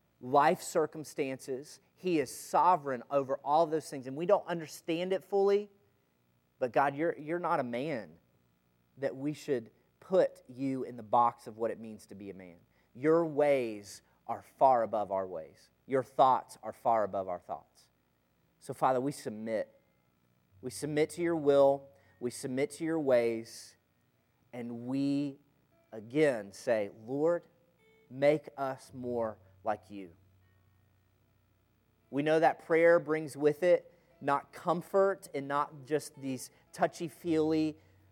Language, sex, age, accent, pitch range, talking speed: English, male, 30-49, American, 95-145 Hz, 140 wpm